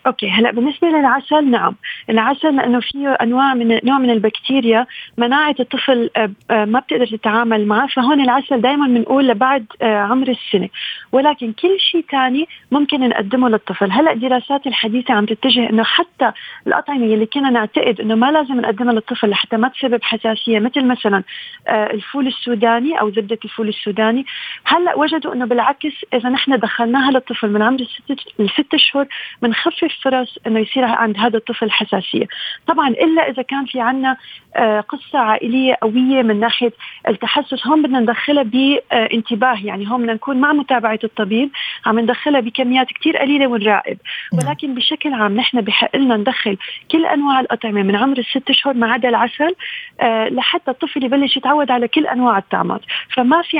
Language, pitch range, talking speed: Arabic, 225-275 Hz, 155 wpm